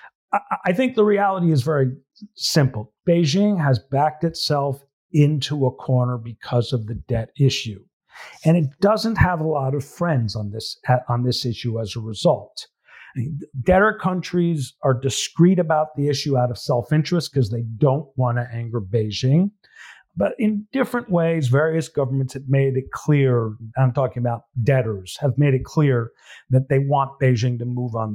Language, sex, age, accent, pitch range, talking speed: English, male, 50-69, American, 120-150 Hz, 165 wpm